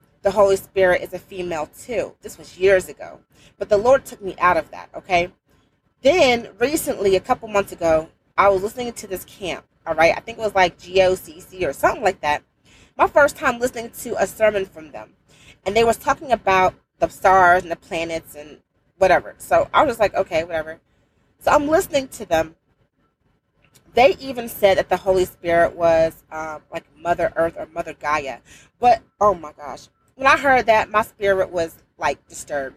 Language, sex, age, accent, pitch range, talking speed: English, female, 30-49, American, 165-225 Hz, 190 wpm